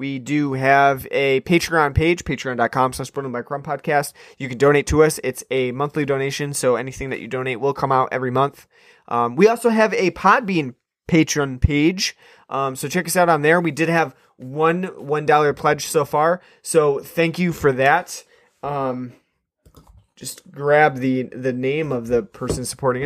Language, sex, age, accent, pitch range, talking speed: English, male, 30-49, American, 130-160 Hz, 175 wpm